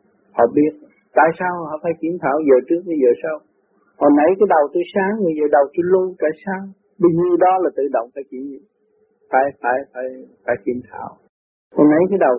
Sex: male